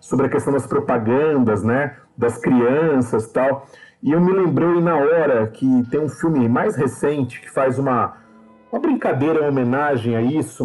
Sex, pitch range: male, 130-200 Hz